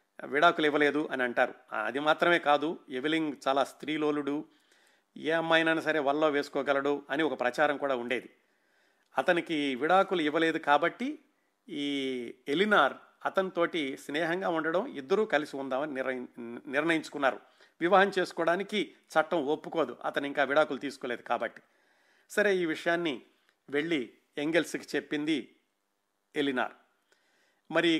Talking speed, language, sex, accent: 105 wpm, Telugu, male, native